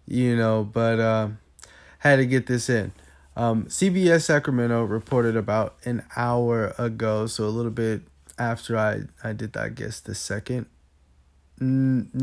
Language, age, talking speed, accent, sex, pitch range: English, 20-39, 150 wpm, American, male, 110-120 Hz